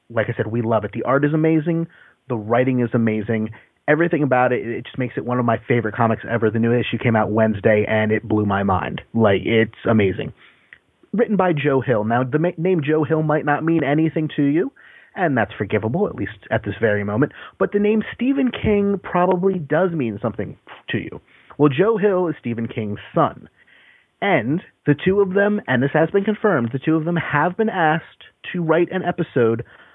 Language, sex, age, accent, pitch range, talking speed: English, male, 30-49, American, 110-155 Hz, 210 wpm